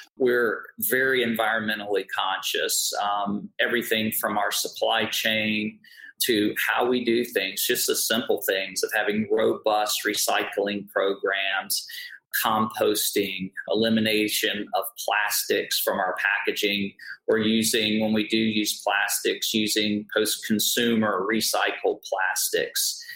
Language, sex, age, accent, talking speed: English, male, 40-59, American, 110 wpm